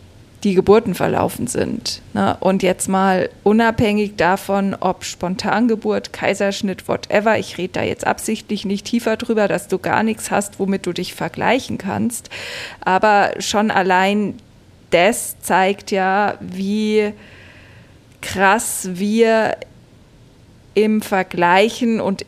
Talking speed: 115 wpm